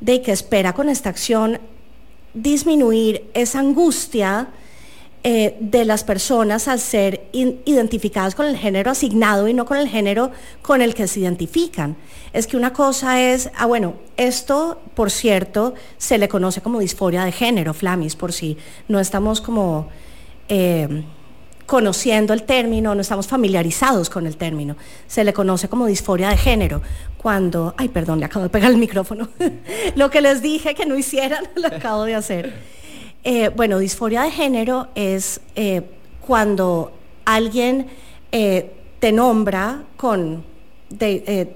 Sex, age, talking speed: female, 30-49, 150 wpm